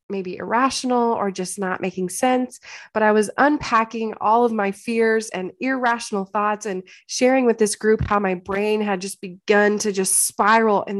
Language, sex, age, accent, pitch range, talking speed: English, female, 20-39, American, 185-220 Hz, 180 wpm